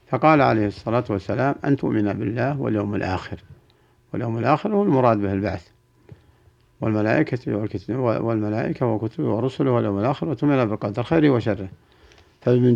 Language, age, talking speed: Arabic, 60-79, 125 wpm